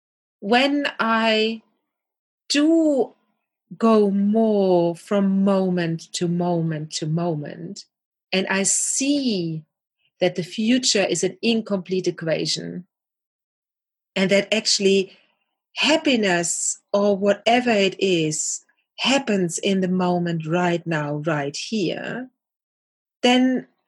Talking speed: 95 wpm